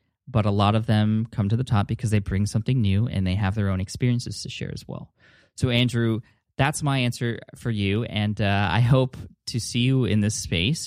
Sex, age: male, 20-39